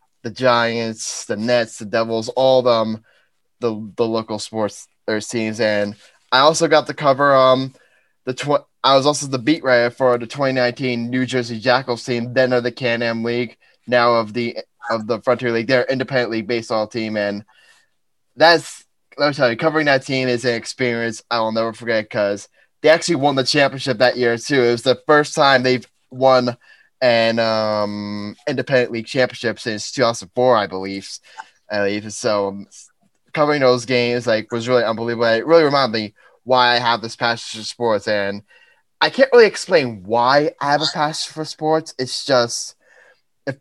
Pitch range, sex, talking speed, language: 115-135 Hz, male, 185 wpm, English